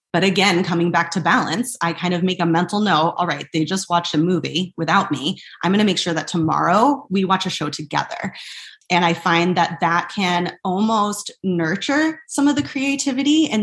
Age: 20-39